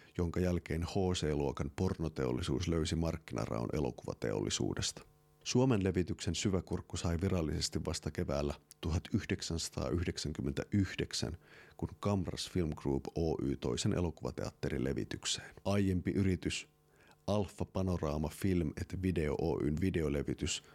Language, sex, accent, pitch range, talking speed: Finnish, male, native, 75-95 Hz, 95 wpm